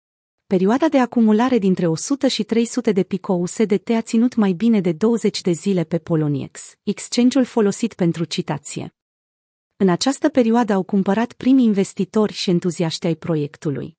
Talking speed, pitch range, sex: 150 wpm, 175-230 Hz, female